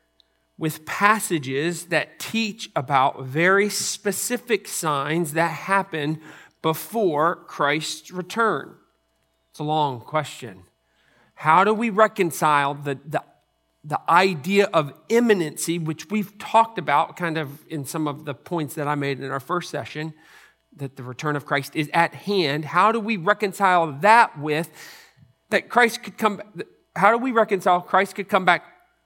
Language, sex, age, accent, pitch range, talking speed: English, male, 40-59, American, 140-195 Hz, 145 wpm